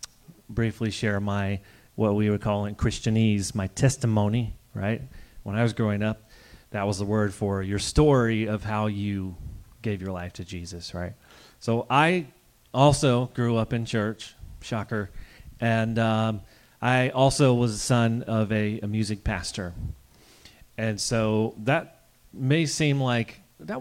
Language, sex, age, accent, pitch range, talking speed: English, male, 30-49, American, 105-130 Hz, 150 wpm